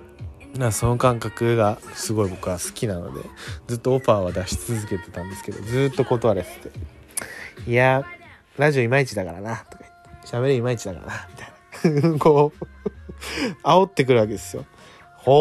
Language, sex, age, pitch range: Japanese, male, 20-39, 90-120 Hz